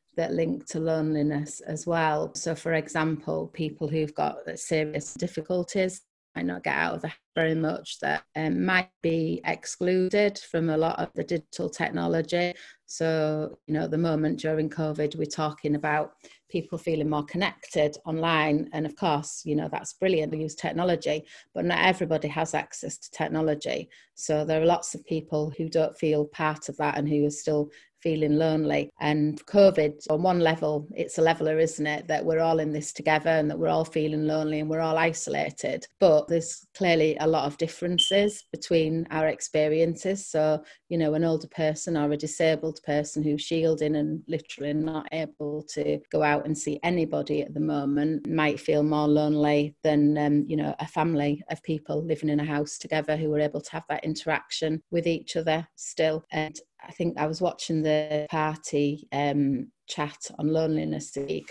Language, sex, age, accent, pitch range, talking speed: English, female, 30-49, British, 150-165 Hz, 180 wpm